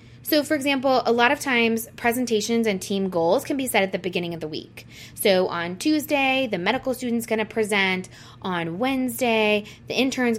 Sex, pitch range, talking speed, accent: female, 175-230 Hz, 190 wpm, American